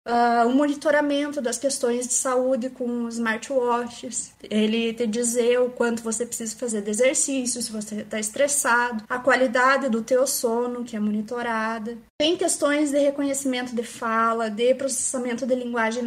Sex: female